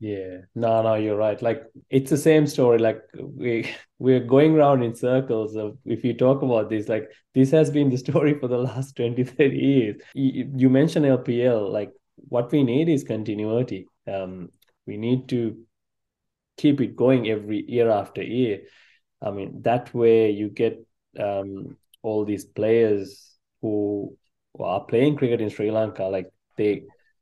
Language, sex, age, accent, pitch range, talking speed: English, male, 20-39, Indian, 105-125 Hz, 165 wpm